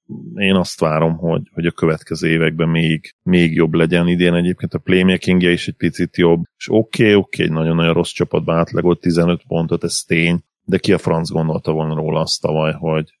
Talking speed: 195 wpm